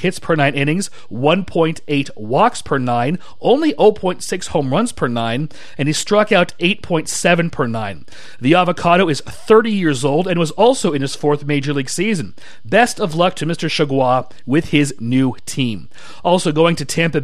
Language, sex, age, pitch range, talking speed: English, male, 40-59, 140-180 Hz, 175 wpm